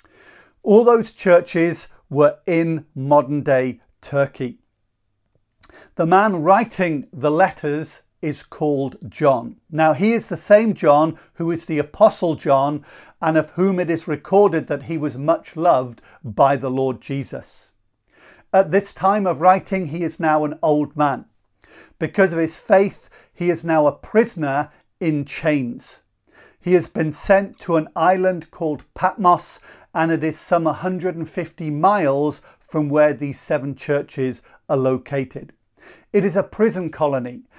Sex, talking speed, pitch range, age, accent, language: male, 145 wpm, 145-185 Hz, 40-59, British, English